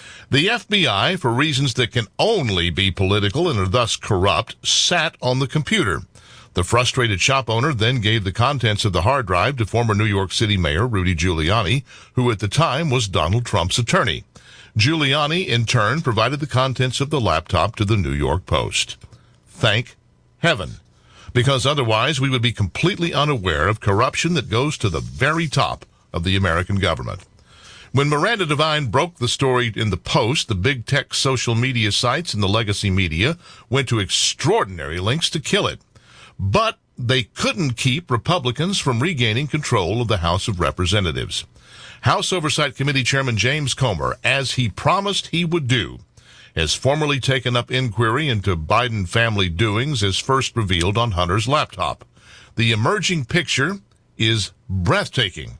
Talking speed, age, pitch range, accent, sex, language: 165 wpm, 60-79, 105-140 Hz, American, male, English